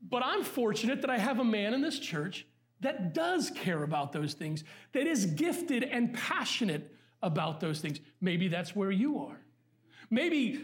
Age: 40-59